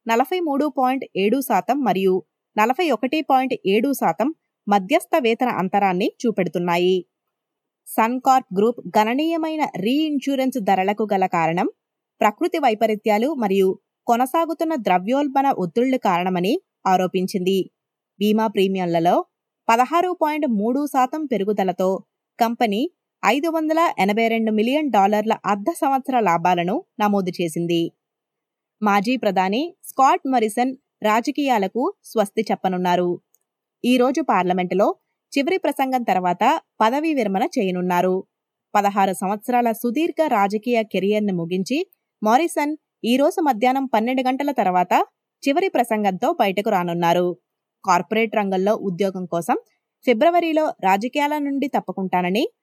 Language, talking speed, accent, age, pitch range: Telugu, 90 wpm, native, 20-39, 195-280 Hz